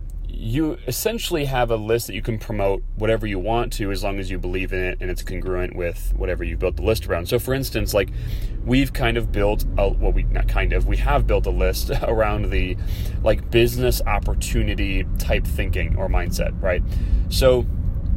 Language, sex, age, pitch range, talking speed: English, male, 30-49, 90-110 Hz, 200 wpm